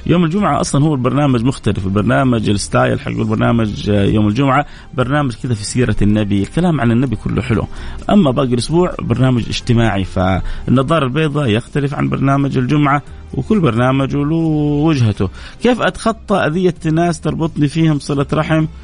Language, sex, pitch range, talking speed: Arabic, male, 125-170 Hz, 140 wpm